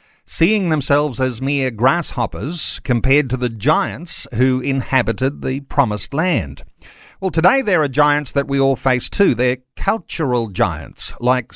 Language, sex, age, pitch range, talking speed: English, male, 50-69, 125-170 Hz, 145 wpm